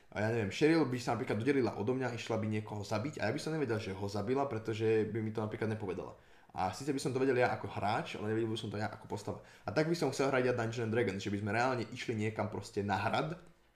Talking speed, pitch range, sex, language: 280 wpm, 100-120 Hz, male, Slovak